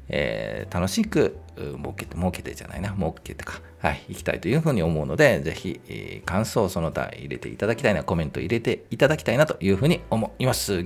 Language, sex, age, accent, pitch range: Japanese, male, 40-59, native, 85-120 Hz